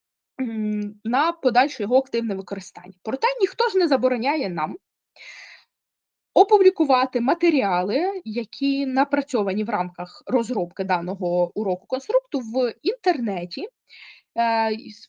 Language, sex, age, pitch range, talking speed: Ukrainian, female, 20-39, 200-290 Hz, 95 wpm